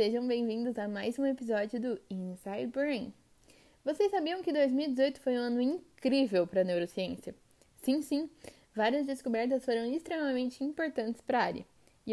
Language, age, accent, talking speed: Portuguese, 10-29, Brazilian, 155 wpm